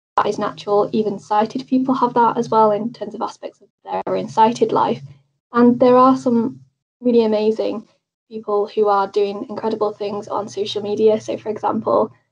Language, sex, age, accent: English, female, 10-29, British